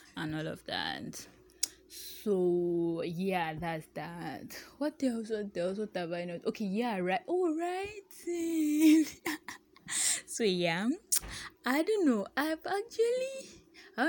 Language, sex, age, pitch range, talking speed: English, female, 10-29, 170-280 Hz, 130 wpm